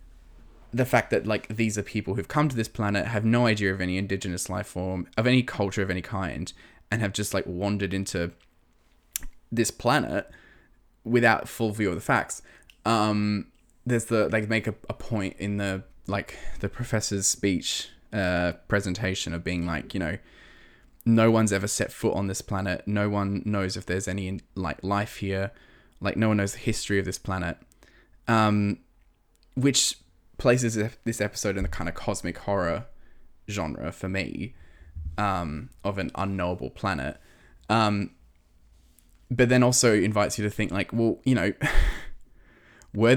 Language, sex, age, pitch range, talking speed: English, male, 10-29, 90-115 Hz, 165 wpm